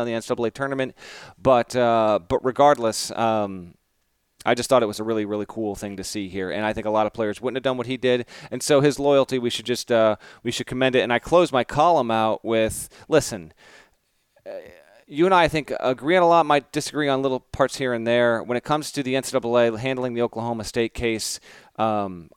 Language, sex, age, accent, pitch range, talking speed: English, male, 30-49, American, 110-135 Hz, 225 wpm